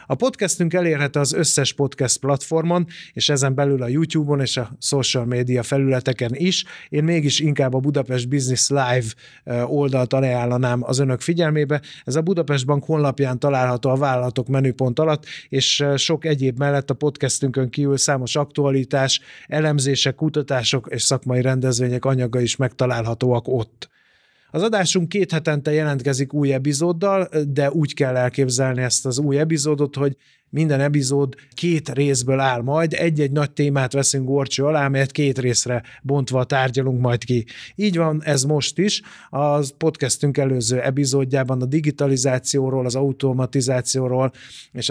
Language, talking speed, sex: Hungarian, 140 wpm, male